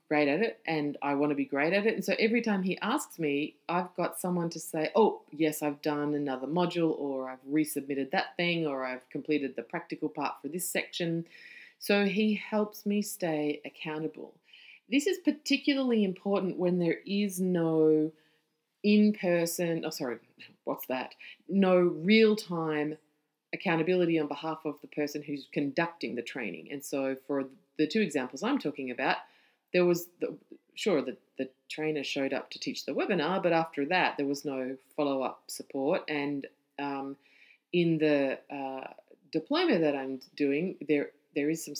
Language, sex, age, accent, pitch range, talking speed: English, female, 30-49, Australian, 145-190 Hz, 170 wpm